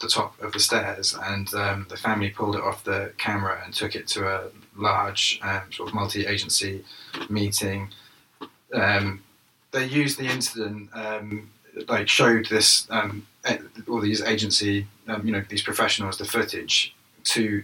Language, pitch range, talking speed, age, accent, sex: English, 100-110 Hz, 160 wpm, 20-39, British, male